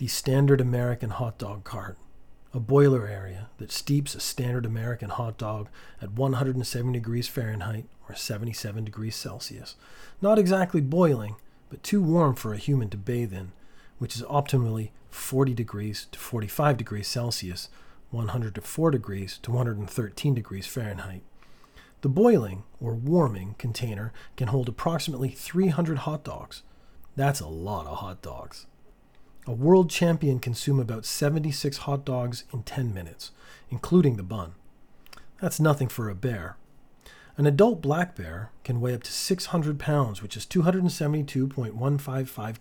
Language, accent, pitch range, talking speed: English, American, 110-145 Hz, 145 wpm